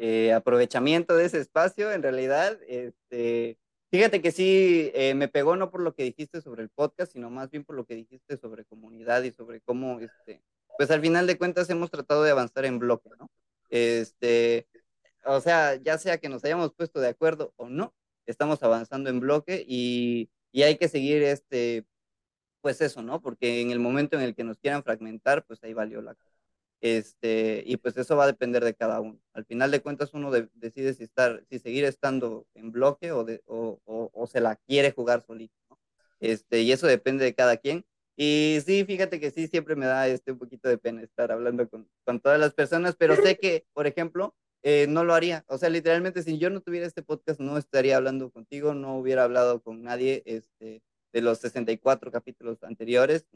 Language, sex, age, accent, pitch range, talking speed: Spanish, male, 20-39, Mexican, 115-150 Hz, 205 wpm